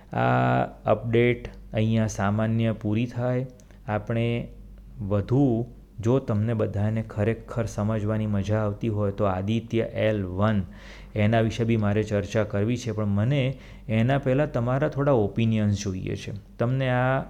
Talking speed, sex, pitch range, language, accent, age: 100 wpm, male, 100-115 Hz, Gujarati, native, 30-49